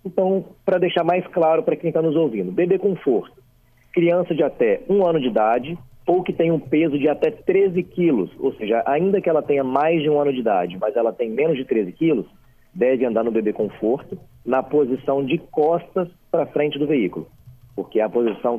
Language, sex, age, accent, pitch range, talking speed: Portuguese, male, 40-59, Brazilian, 120-165 Hz, 205 wpm